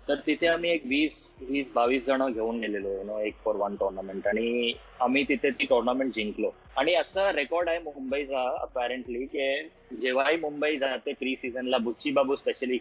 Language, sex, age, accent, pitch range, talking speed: Marathi, male, 20-39, native, 120-150 Hz, 175 wpm